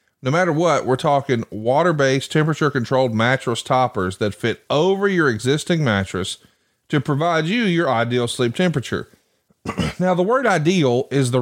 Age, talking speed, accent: 40-59, 145 wpm, American